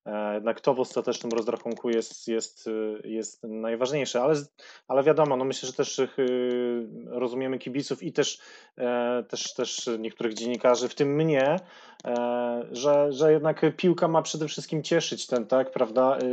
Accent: native